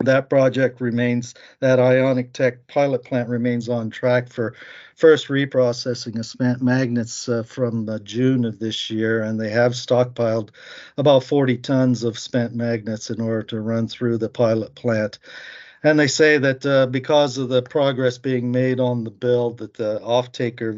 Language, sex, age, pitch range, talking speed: English, male, 50-69, 115-130 Hz, 170 wpm